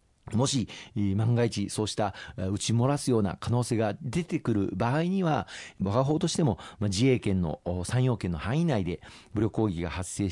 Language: Japanese